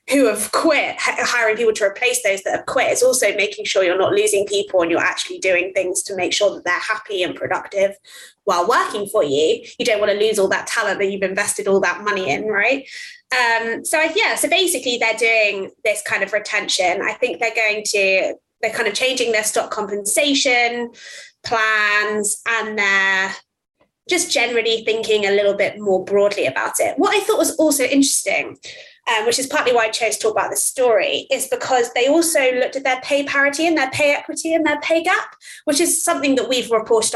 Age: 20-39